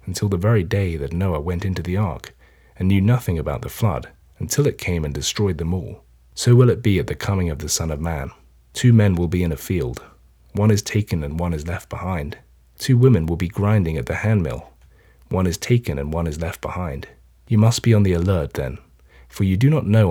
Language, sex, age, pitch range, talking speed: English, male, 30-49, 80-105 Hz, 235 wpm